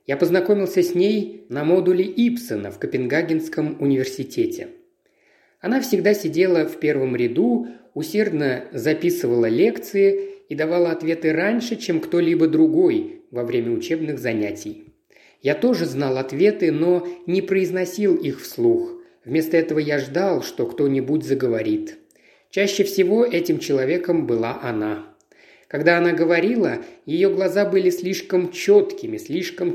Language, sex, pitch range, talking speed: Russian, male, 145-210 Hz, 125 wpm